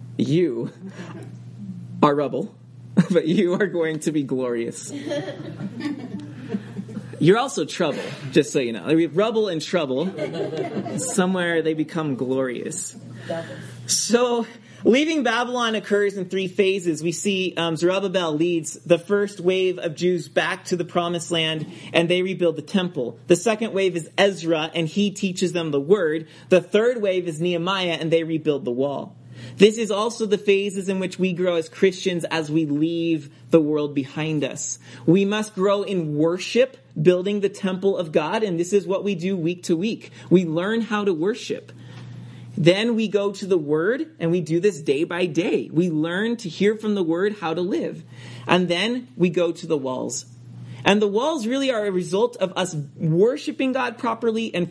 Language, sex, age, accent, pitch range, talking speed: English, male, 30-49, American, 160-200 Hz, 170 wpm